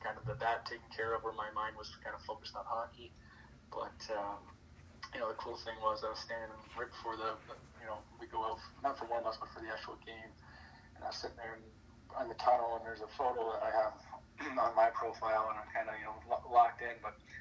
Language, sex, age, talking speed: English, male, 20-39, 250 wpm